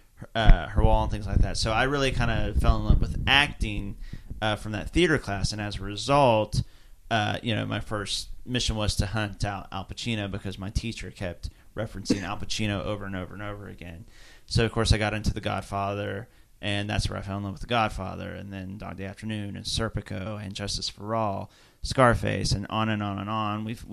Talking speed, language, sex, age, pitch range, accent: 220 wpm, English, male, 30-49, 100-120 Hz, American